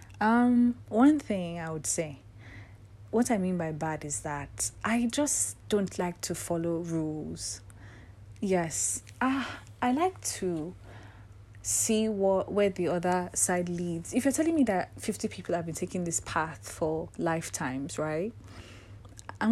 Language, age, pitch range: English, 30-49, 145-195 Hz